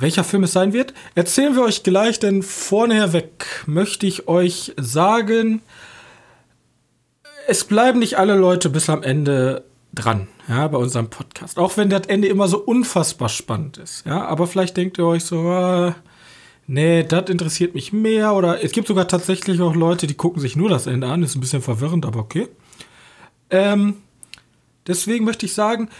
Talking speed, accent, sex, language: 175 wpm, German, male, German